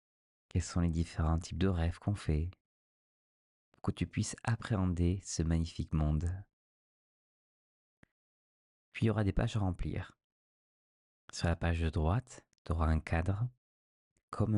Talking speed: 145 wpm